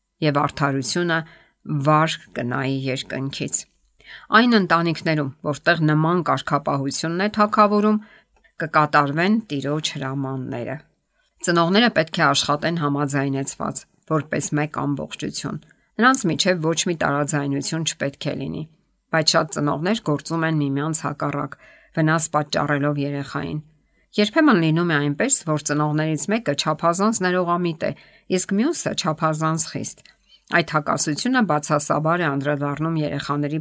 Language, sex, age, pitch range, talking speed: English, female, 50-69, 145-170 Hz, 85 wpm